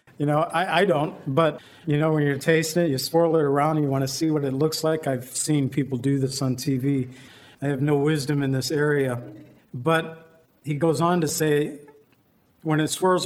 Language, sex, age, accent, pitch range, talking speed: English, male, 50-69, American, 140-165 Hz, 215 wpm